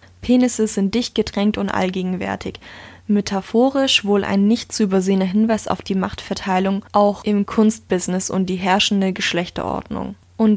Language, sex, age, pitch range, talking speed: German, female, 10-29, 185-215 Hz, 135 wpm